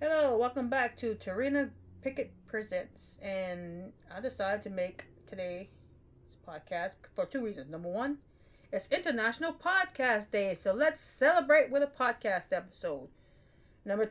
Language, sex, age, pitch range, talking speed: English, female, 30-49, 175-255 Hz, 130 wpm